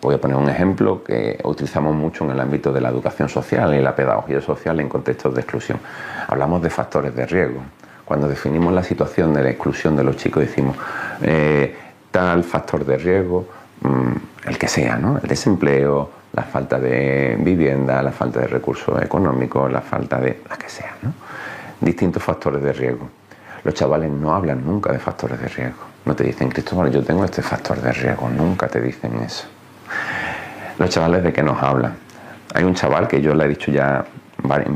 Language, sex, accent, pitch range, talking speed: Spanish, male, Spanish, 70-80 Hz, 185 wpm